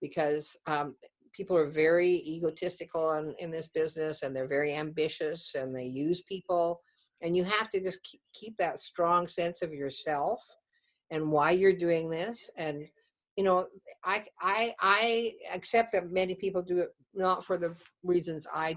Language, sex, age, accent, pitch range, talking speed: English, female, 50-69, American, 155-190 Hz, 165 wpm